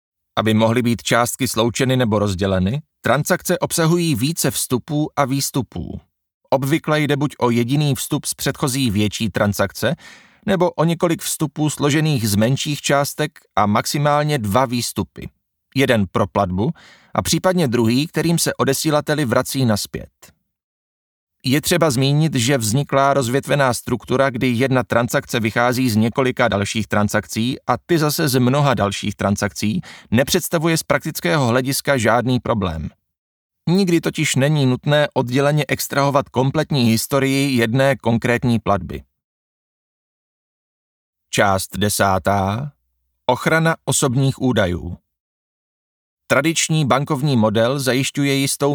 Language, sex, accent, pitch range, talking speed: Czech, male, native, 110-150 Hz, 115 wpm